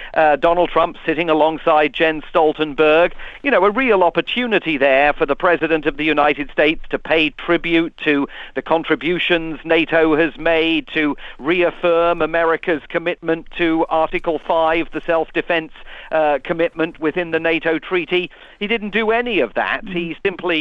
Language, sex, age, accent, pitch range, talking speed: English, male, 50-69, British, 155-175 Hz, 150 wpm